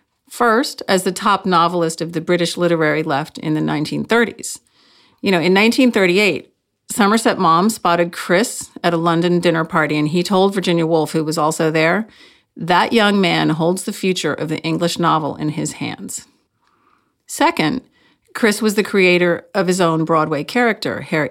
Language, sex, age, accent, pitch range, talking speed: English, female, 40-59, American, 165-230 Hz, 165 wpm